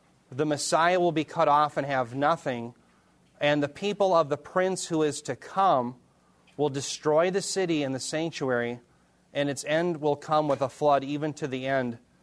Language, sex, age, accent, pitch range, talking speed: English, male, 30-49, American, 135-175 Hz, 185 wpm